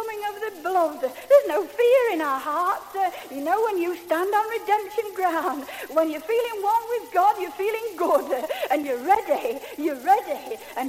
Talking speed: 195 wpm